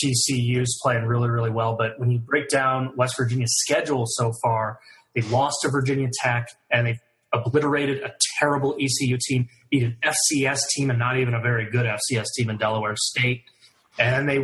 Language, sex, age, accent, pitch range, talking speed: English, male, 30-49, American, 115-130 Hz, 185 wpm